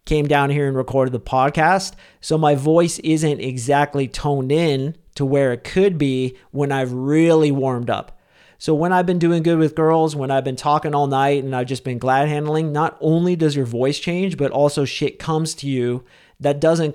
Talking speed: 205 wpm